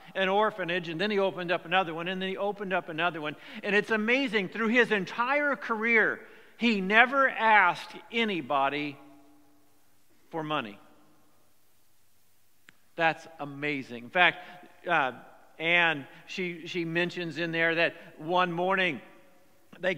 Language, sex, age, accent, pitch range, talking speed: English, male, 50-69, American, 170-210 Hz, 130 wpm